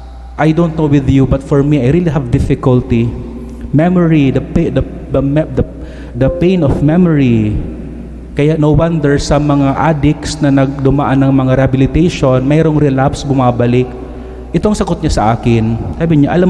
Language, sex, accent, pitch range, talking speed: English, male, Filipino, 125-155 Hz, 155 wpm